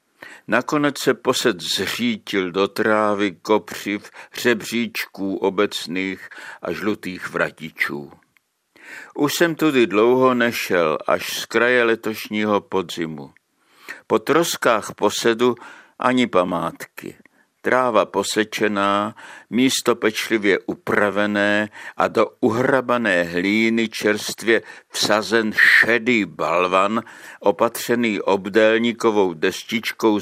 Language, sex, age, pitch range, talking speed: Czech, male, 60-79, 105-120 Hz, 85 wpm